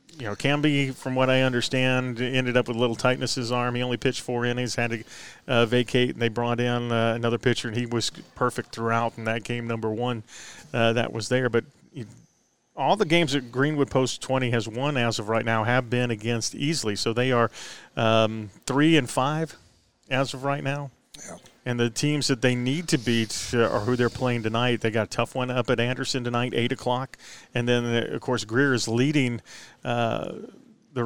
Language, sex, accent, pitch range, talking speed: English, male, American, 115-130 Hz, 210 wpm